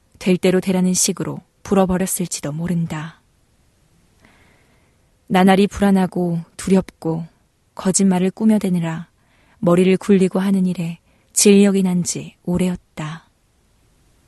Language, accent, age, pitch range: Korean, native, 20-39, 170-195 Hz